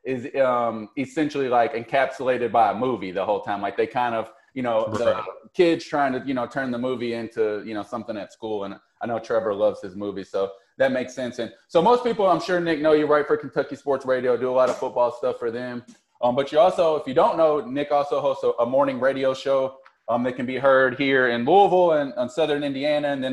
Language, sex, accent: English, male, American